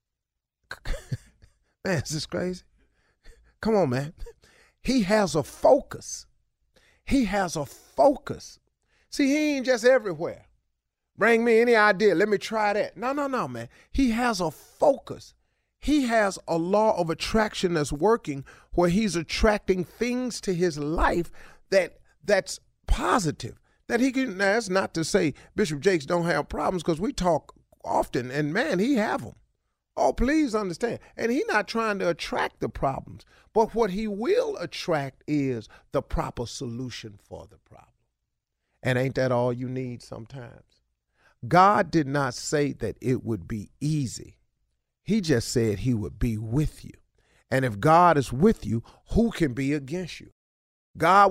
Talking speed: 160 wpm